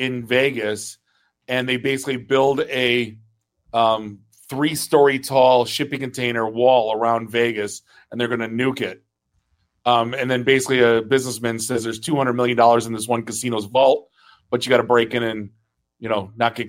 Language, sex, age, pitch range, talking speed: English, male, 30-49, 110-125 Hz, 175 wpm